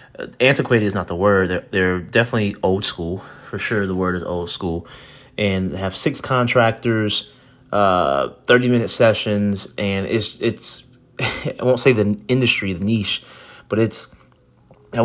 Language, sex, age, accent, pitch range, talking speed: English, male, 30-49, American, 95-110 Hz, 155 wpm